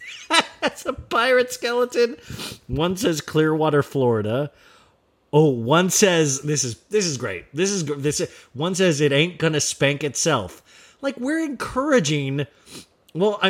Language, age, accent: English, 30-49, American